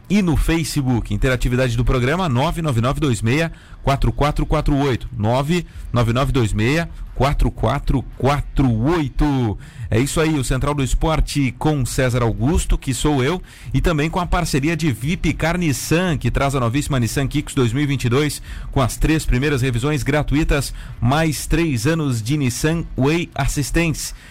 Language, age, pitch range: Portuguese, 40-59, 120-155 Hz